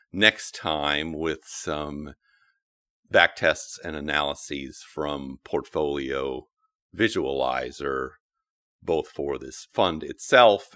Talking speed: 90 wpm